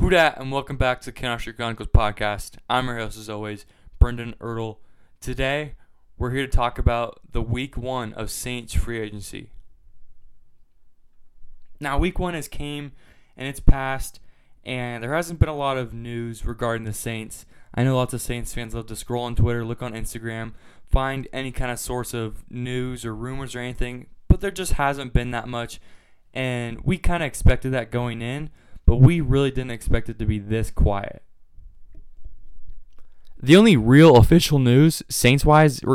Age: 20-39